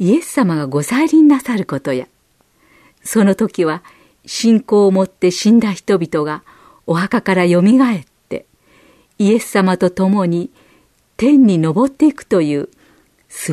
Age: 50-69